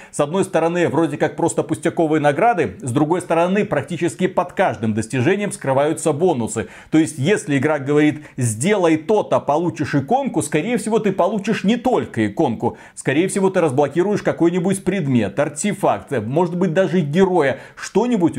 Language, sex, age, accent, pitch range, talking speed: Russian, male, 40-59, native, 130-180 Hz, 145 wpm